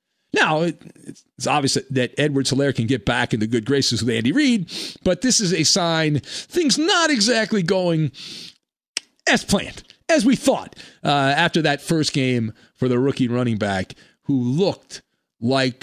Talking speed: 165 wpm